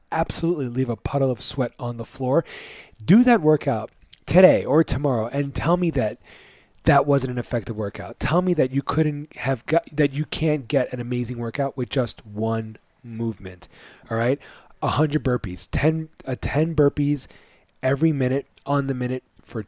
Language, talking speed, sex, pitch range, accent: English, 175 wpm, male, 120-150 Hz, American